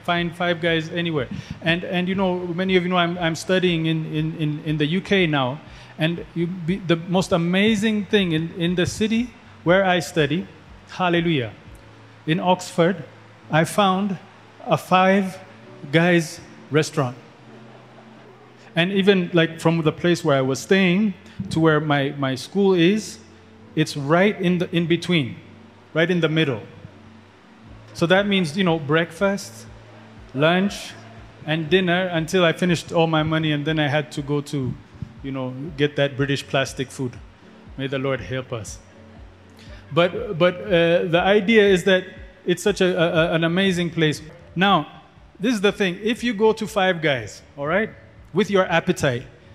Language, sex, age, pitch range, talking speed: English, male, 30-49, 140-185 Hz, 160 wpm